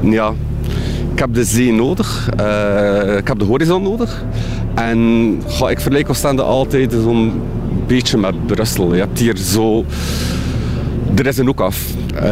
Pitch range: 105-130 Hz